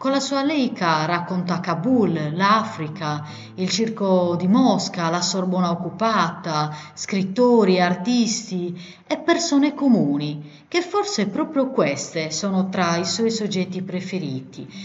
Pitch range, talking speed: 170-225 Hz, 115 wpm